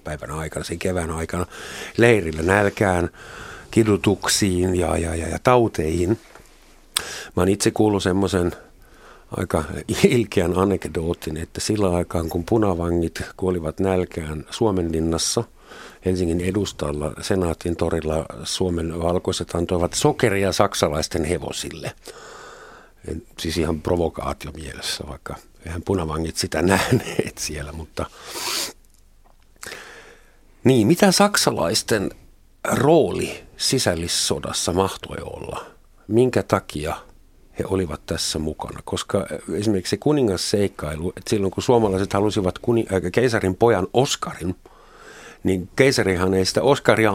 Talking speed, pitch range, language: 100 wpm, 85-105 Hz, Finnish